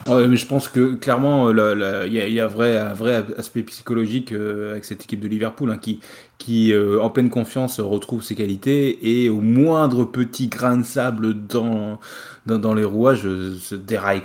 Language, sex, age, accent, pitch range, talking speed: French, male, 20-39, French, 110-130 Hz, 195 wpm